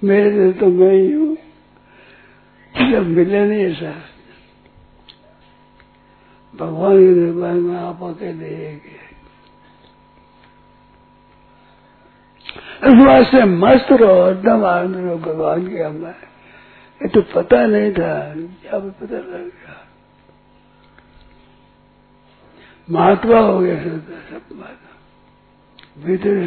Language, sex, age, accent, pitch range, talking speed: Hindi, male, 60-79, native, 160-210 Hz, 85 wpm